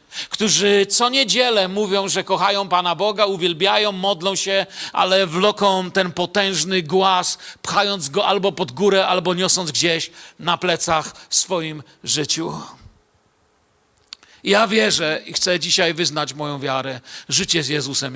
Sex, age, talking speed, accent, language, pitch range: male, 50-69, 130 wpm, native, Polish, 185-230 Hz